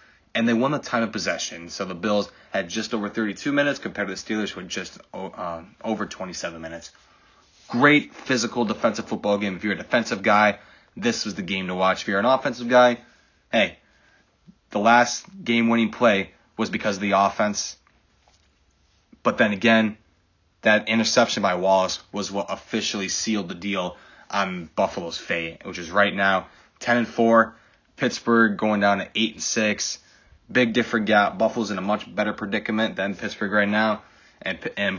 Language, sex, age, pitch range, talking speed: English, male, 20-39, 95-115 Hz, 170 wpm